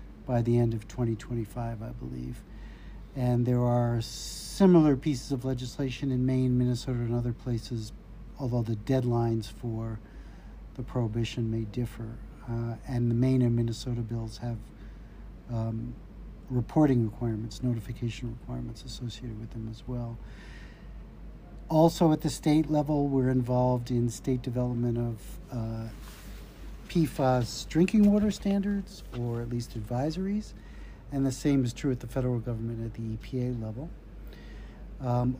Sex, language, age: male, English, 50-69